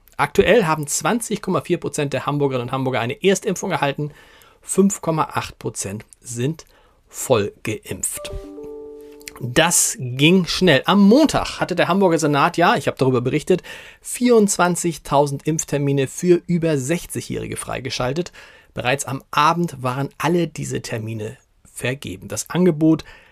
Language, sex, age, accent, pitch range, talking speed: German, male, 40-59, German, 130-180 Hz, 115 wpm